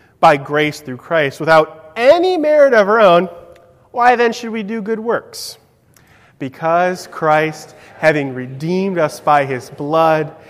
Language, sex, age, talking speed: English, male, 30-49, 145 wpm